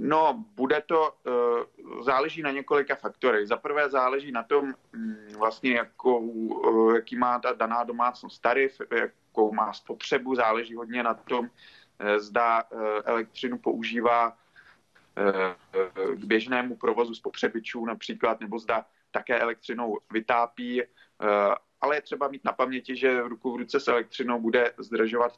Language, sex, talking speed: Czech, male, 125 wpm